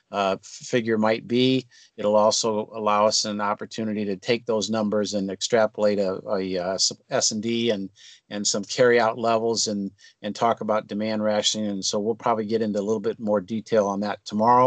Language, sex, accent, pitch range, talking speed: English, male, American, 105-120 Hz, 190 wpm